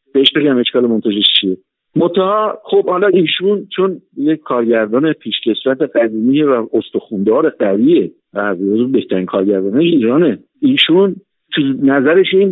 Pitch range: 135-185 Hz